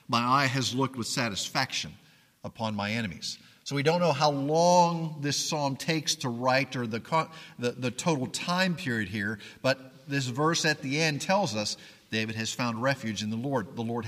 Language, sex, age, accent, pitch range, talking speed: English, male, 50-69, American, 120-155 Hz, 190 wpm